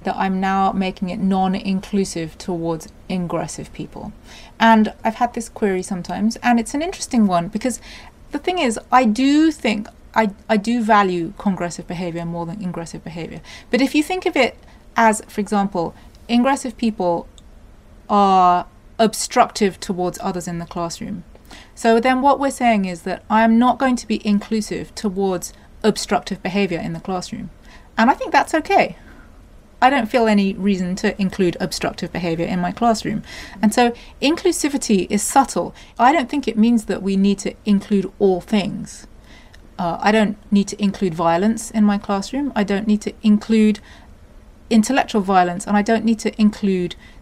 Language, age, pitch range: English, 30-49, 185-230 Hz